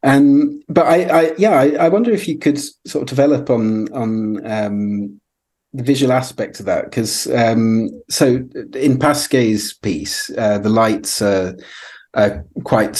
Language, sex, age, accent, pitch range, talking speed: English, male, 30-49, British, 100-125 Hz, 155 wpm